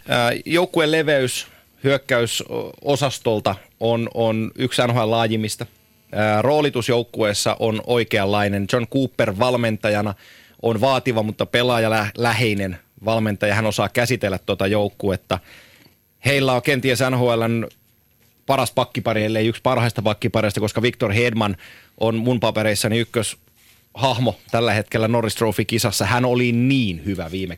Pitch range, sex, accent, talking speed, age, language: 105-120 Hz, male, native, 110 wpm, 30-49, Finnish